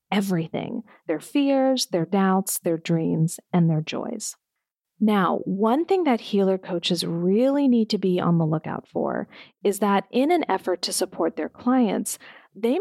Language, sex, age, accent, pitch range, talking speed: English, female, 40-59, American, 185-255 Hz, 160 wpm